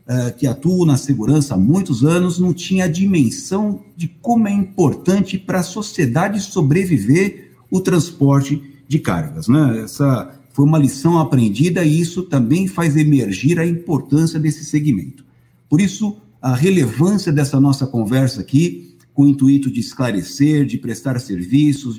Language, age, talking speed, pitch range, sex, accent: Portuguese, 50-69, 145 wpm, 125-160 Hz, male, Brazilian